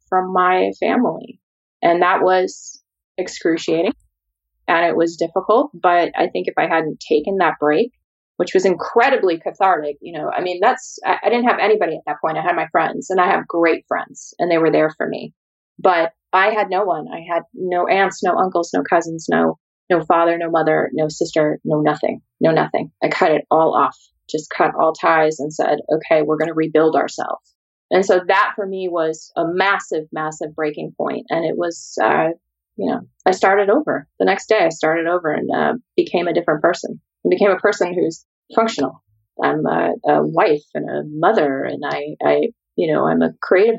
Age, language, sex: 20-39, English, female